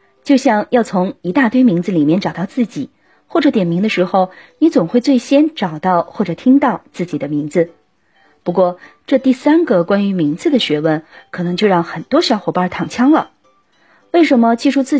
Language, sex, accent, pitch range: Chinese, female, native, 175-270 Hz